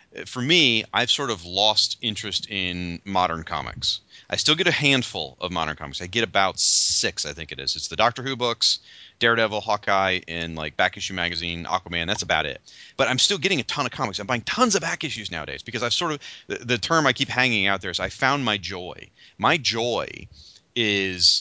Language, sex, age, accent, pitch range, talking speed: English, male, 30-49, American, 95-135 Hz, 215 wpm